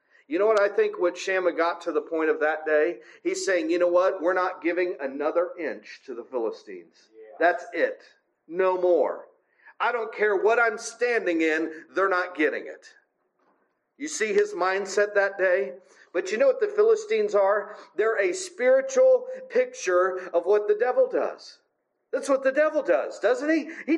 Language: English